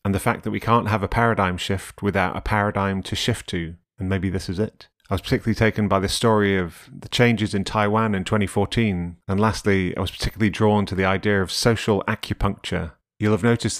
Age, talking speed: 30-49, 215 wpm